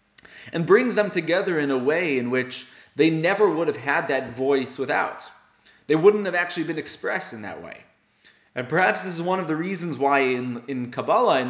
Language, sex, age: English, male, 20-39